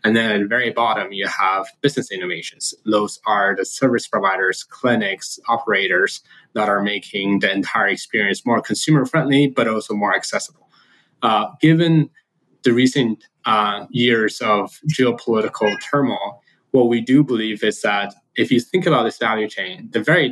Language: English